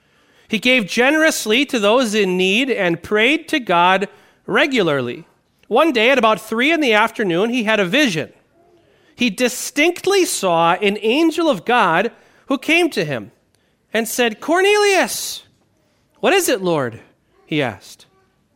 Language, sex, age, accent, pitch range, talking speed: English, male, 40-59, American, 185-250 Hz, 140 wpm